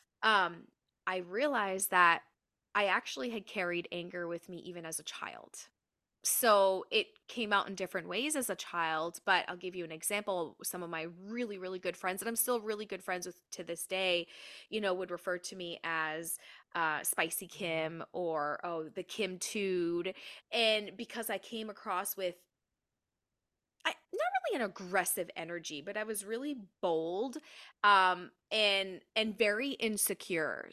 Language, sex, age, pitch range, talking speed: English, female, 20-39, 170-210 Hz, 165 wpm